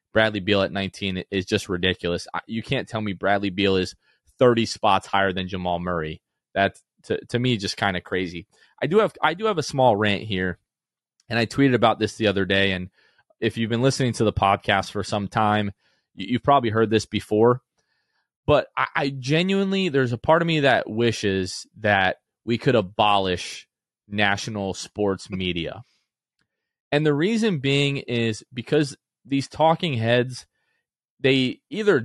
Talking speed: 170 wpm